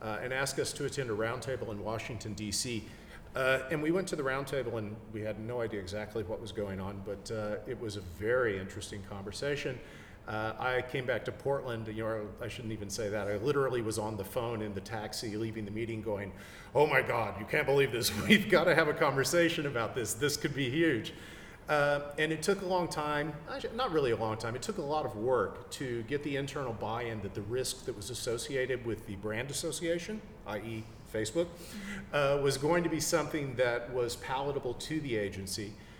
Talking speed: 215 wpm